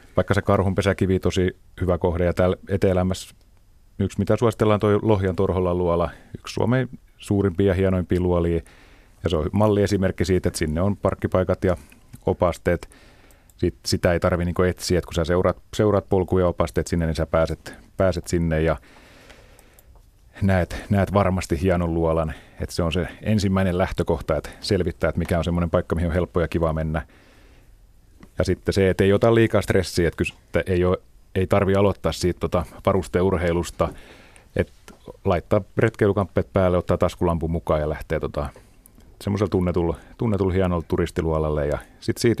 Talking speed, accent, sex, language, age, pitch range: 160 wpm, native, male, Finnish, 30-49, 85-95 Hz